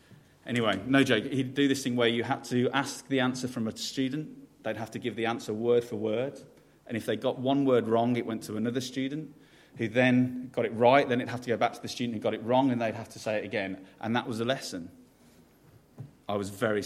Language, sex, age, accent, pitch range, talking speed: English, male, 30-49, British, 110-135 Hz, 255 wpm